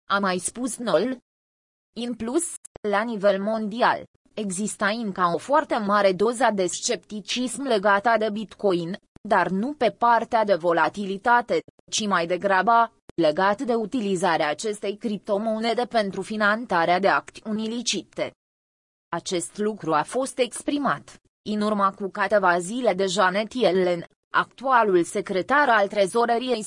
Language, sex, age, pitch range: Romanian, female, 20-39, 185-235 Hz